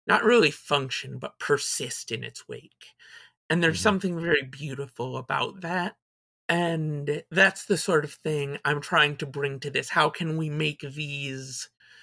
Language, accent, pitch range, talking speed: English, American, 140-170 Hz, 160 wpm